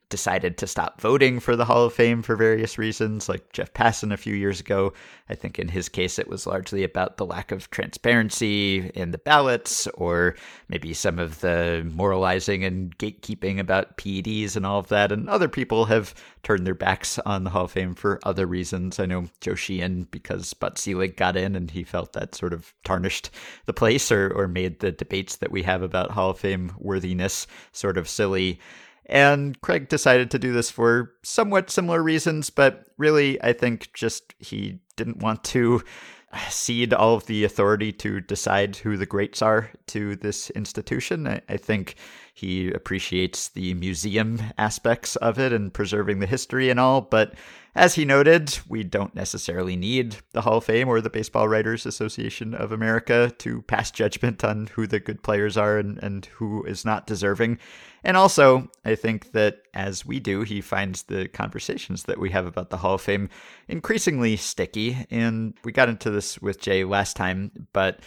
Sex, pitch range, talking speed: male, 95-115 Hz, 185 wpm